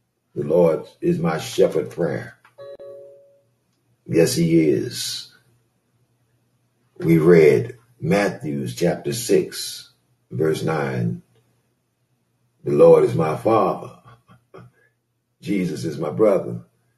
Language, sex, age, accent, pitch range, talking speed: English, male, 50-69, American, 115-175 Hz, 90 wpm